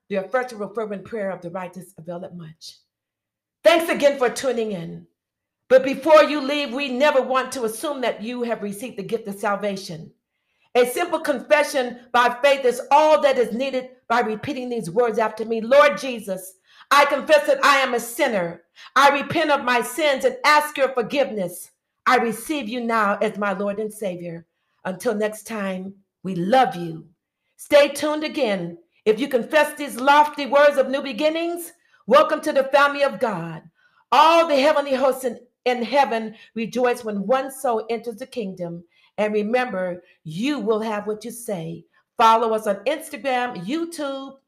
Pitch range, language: 190-275 Hz, English